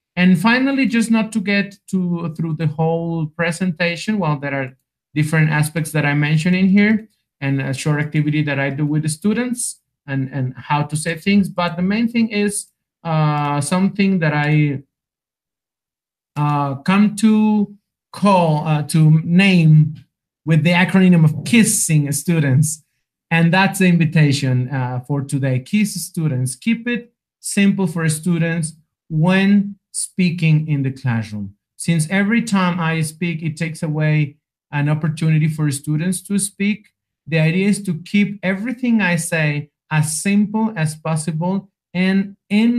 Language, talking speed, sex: English, 145 wpm, male